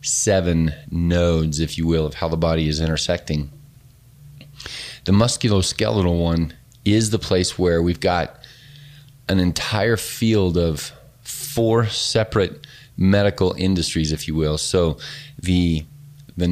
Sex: male